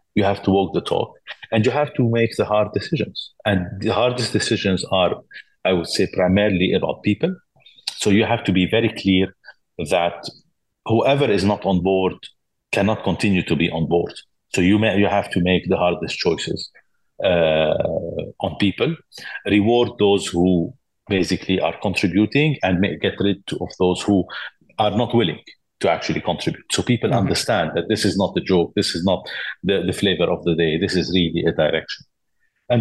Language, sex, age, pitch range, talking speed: English, male, 50-69, 90-110 Hz, 185 wpm